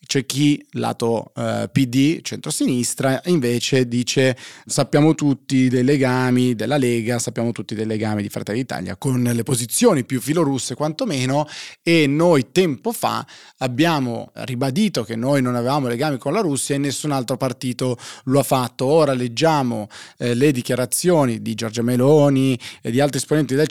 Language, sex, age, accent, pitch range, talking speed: Italian, male, 30-49, native, 120-140 Hz, 155 wpm